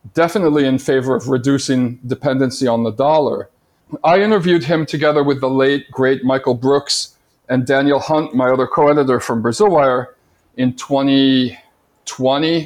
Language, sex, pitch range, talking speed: English, male, 135-185 Hz, 135 wpm